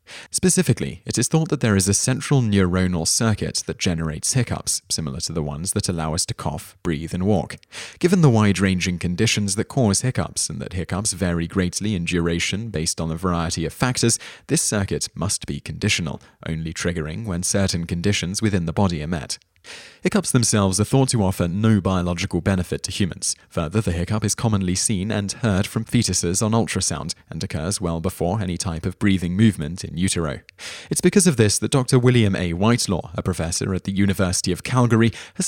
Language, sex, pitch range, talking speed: English, male, 90-115 Hz, 190 wpm